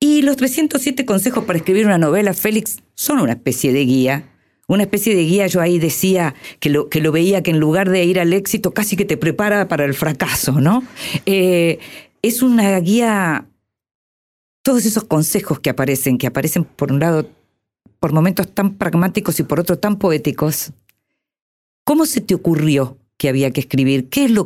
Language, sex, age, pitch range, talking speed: Spanish, female, 40-59, 140-205 Hz, 180 wpm